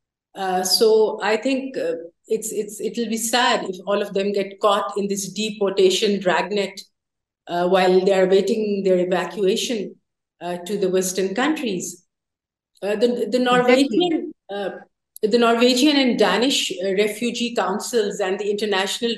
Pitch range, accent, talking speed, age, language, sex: 195-235 Hz, Indian, 145 wpm, 50-69, English, female